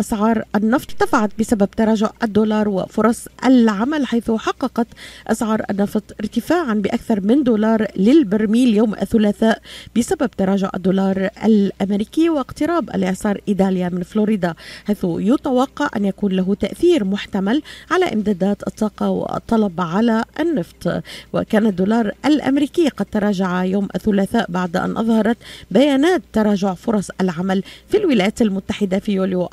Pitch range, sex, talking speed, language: 195-240 Hz, female, 120 wpm, Arabic